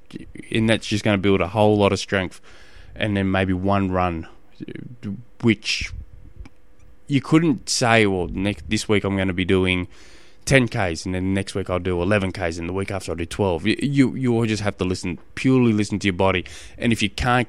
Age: 20-39